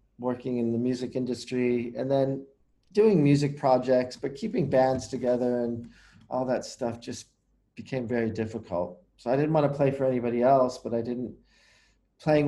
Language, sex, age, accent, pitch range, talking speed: English, male, 40-59, American, 110-130 Hz, 170 wpm